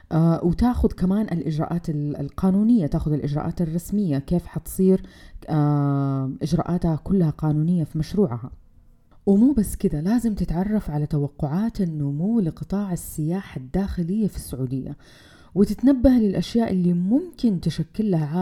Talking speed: 110 wpm